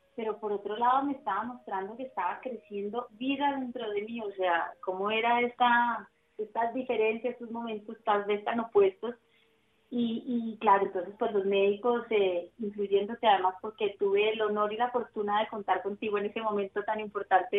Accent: Colombian